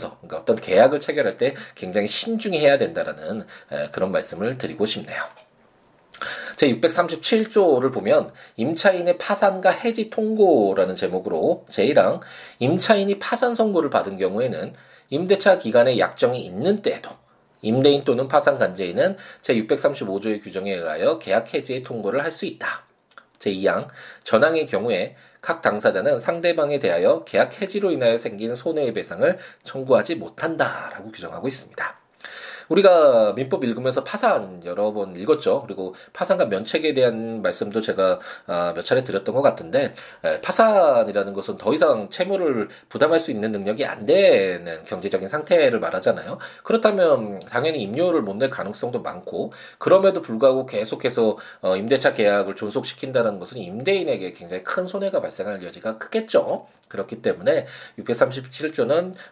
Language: Korean